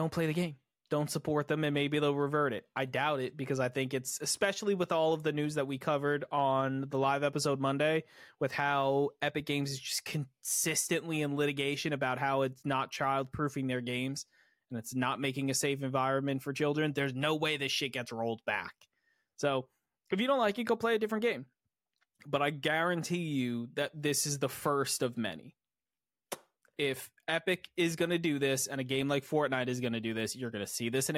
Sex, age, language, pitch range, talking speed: male, 20-39, English, 135-160 Hz, 215 wpm